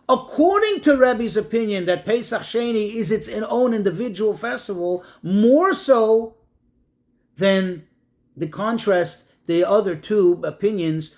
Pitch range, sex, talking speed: 165-235 Hz, male, 115 wpm